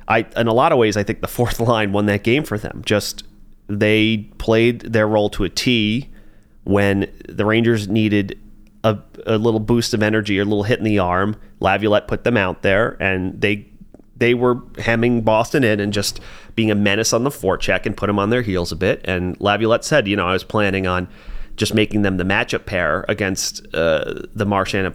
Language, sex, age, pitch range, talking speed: English, male, 30-49, 95-110 Hz, 215 wpm